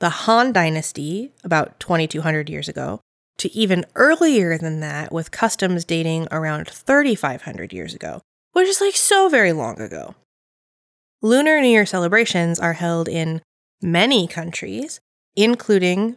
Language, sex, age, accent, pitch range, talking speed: English, female, 20-39, American, 165-225 Hz, 135 wpm